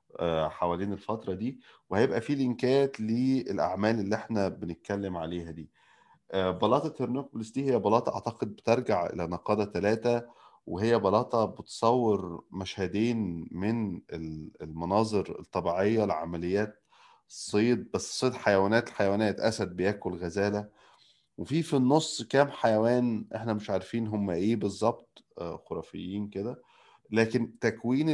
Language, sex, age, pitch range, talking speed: Arabic, male, 30-49, 90-115 Hz, 115 wpm